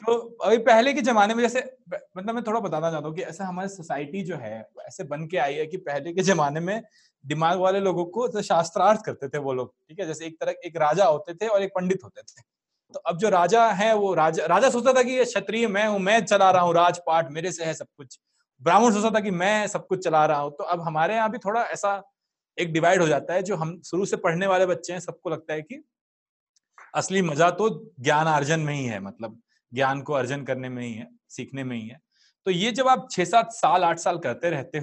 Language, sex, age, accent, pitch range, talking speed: Hindi, male, 30-49, native, 150-200 Hz, 245 wpm